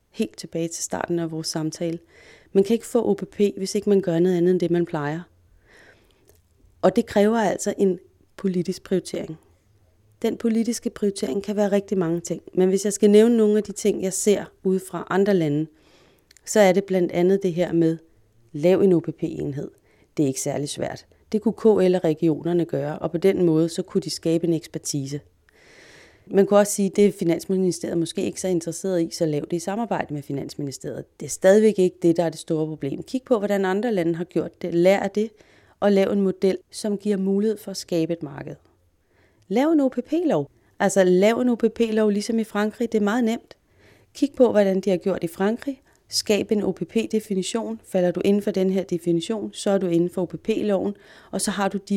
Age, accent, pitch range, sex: 30-49, native, 165-205 Hz, female